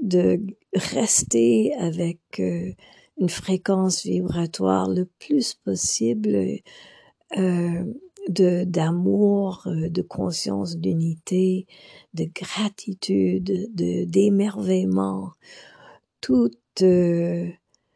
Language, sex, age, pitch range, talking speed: English, female, 50-69, 160-195 Hz, 65 wpm